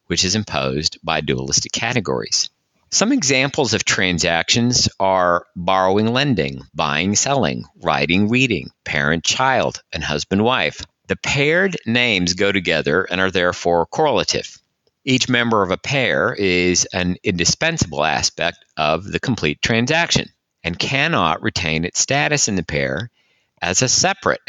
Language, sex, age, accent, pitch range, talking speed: English, male, 50-69, American, 80-115 Hz, 135 wpm